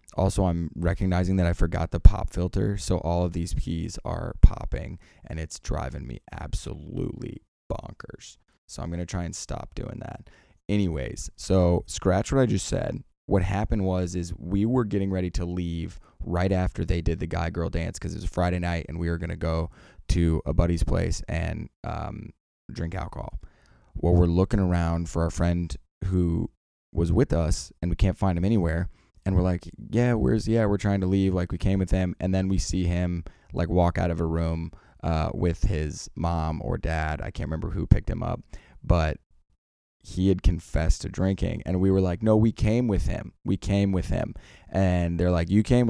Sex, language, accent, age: male, English, American, 20-39